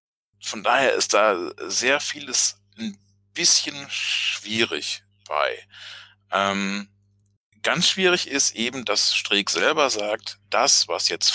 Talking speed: 115 wpm